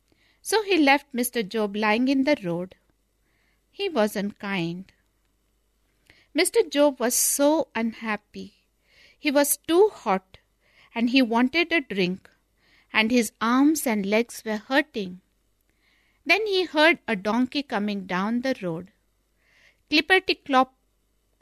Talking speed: 120 wpm